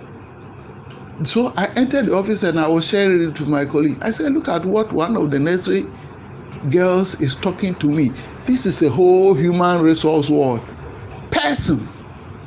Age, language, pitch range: 60-79, English, 135-190 Hz